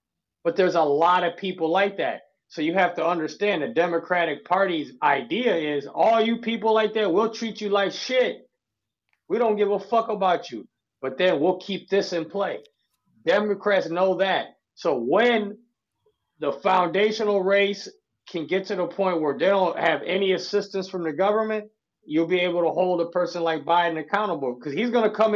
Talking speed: 185 wpm